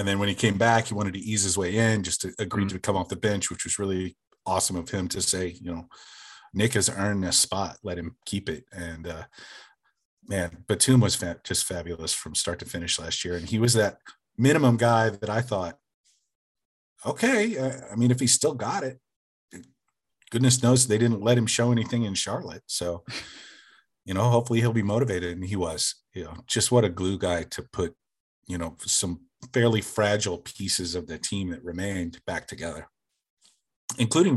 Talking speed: 195 wpm